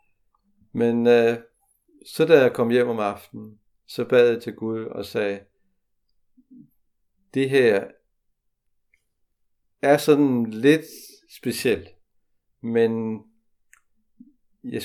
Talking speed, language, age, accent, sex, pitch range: 95 wpm, Danish, 60-79, native, male, 105-135 Hz